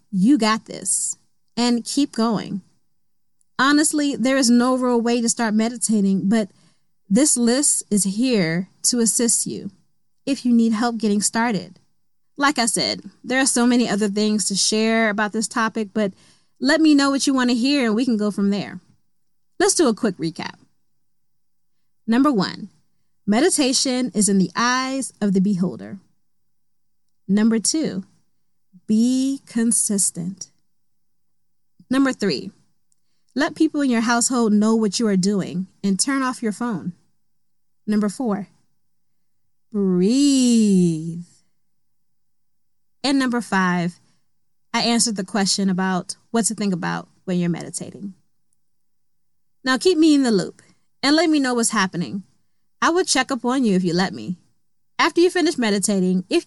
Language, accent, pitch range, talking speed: English, American, 185-250 Hz, 150 wpm